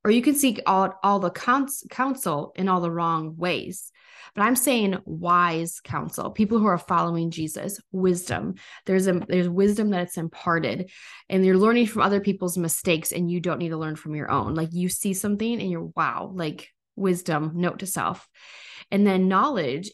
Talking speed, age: 190 wpm, 20-39